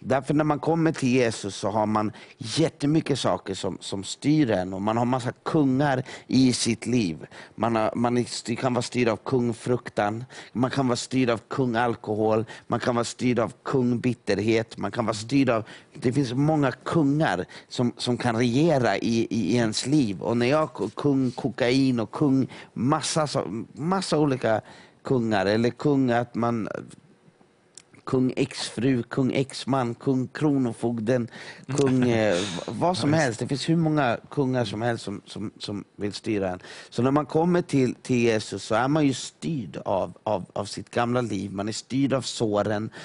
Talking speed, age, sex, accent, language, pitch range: 175 wpm, 50-69, male, Swedish, English, 115-140 Hz